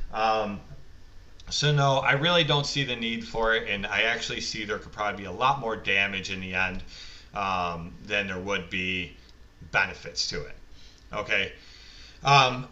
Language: English